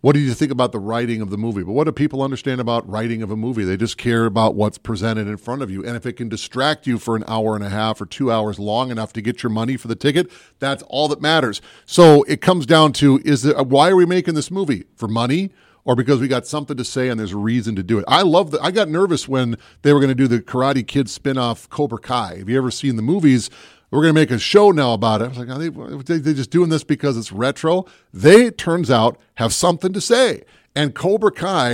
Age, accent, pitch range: 40-59, American, 115-155 Hz